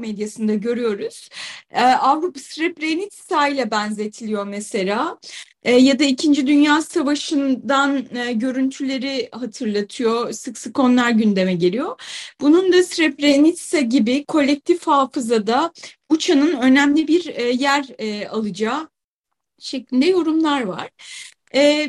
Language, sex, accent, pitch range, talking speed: Turkish, female, native, 255-335 Hz, 105 wpm